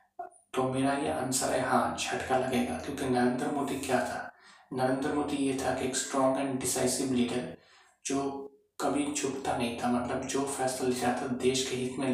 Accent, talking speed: native, 145 wpm